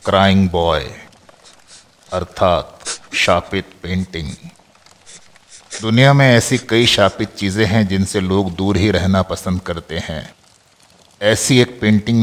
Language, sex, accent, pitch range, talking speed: Hindi, male, native, 90-105 Hz, 115 wpm